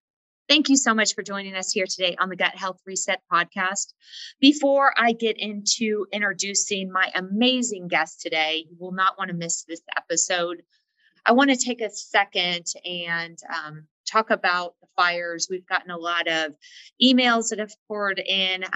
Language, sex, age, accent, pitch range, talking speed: English, female, 30-49, American, 165-205 Hz, 175 wpm